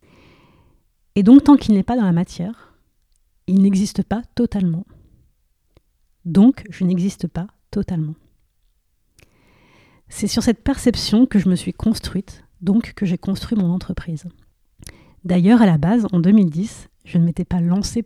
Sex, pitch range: female, 170-205 Hz